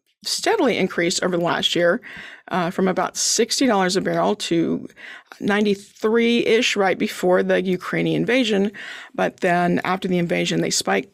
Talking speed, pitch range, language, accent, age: 140 wpm, 180-220 Hz, English, American, 40-59